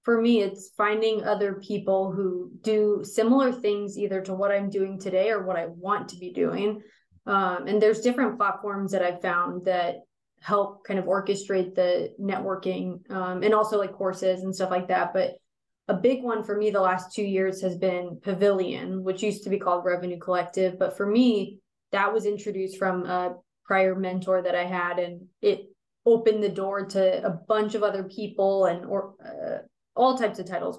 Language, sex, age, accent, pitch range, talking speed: English, female, 20-39, American, 185-210 Hz, 190 wpm